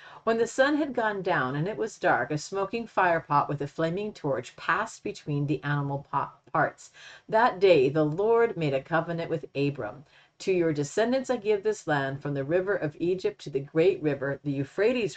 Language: English